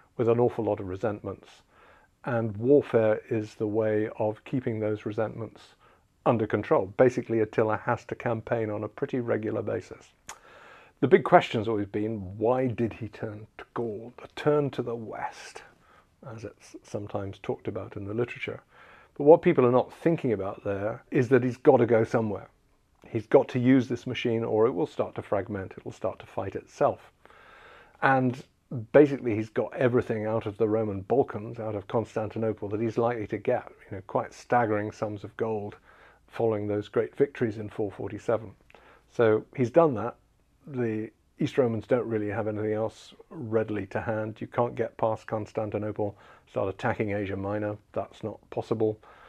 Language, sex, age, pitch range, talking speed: English, male, 50-69, 105-120 Hz, 175 wpm